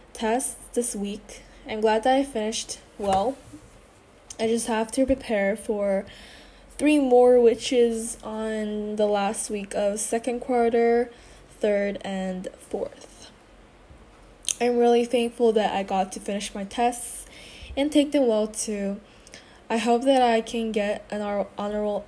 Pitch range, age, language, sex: 210-240 Hz, 10-29, Korean, female